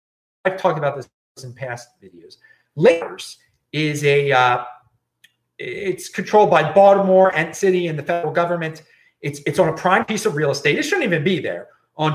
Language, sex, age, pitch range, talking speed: English, male, 30-49, 145-195 Hz, 180 wpm